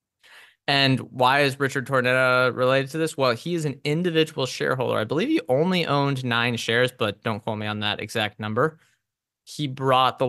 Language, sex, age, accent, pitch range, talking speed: English, male, 20-39, American, 115-140 Hz, 185 wpm